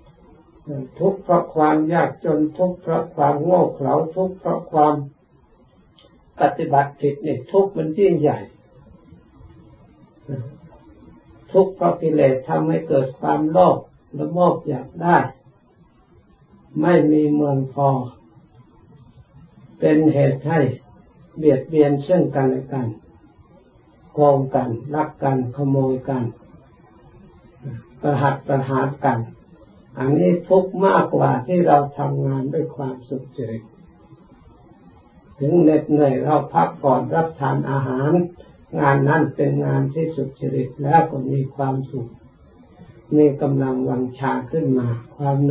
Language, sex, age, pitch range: Thai, male, 60-79, 135-160 Hz